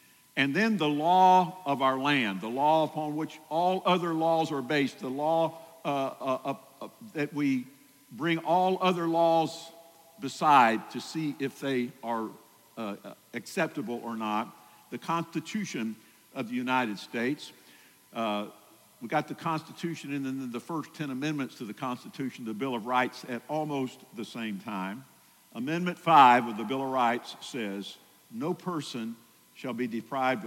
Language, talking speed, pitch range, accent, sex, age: English, 160 wpm, 120-160 Hz, American, male, 50-69